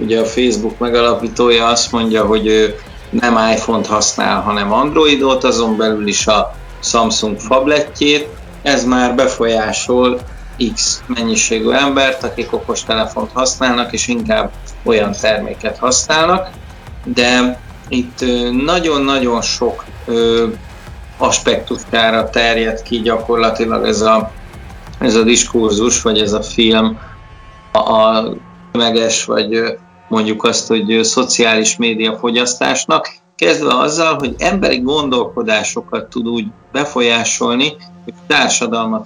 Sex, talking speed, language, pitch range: male, 110 wpm, Hungarian, 110-130 Hz